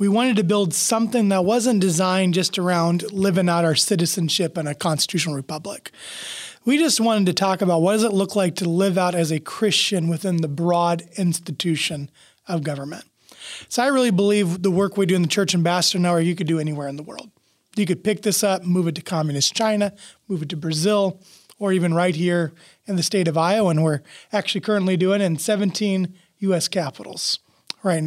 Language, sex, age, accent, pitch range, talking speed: English, male, 30-49, American, 170-215 Hz, 205 wpm